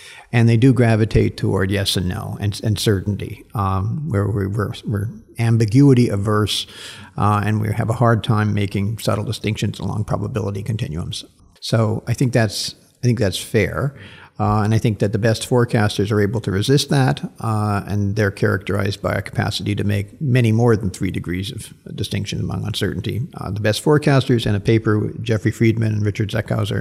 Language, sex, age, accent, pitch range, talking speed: English, male, 50-69, American, 105-135 Hz, 180 wpm